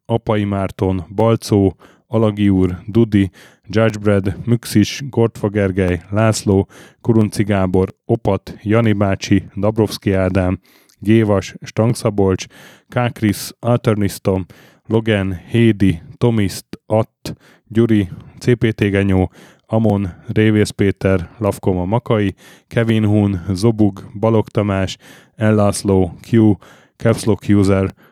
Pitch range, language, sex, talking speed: 95-115 Hz, Hungarian, male, 90 wpm